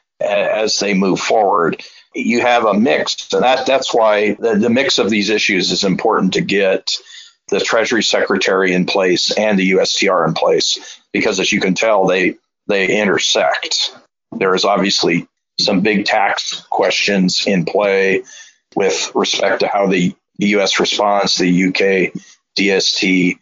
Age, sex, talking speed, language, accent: 40-59, male, 155 wpm, English, American